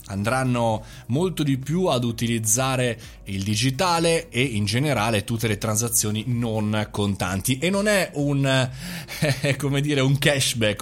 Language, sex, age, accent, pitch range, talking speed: Italian, male, 20-39, native, 110-150 Hz, 140 wpm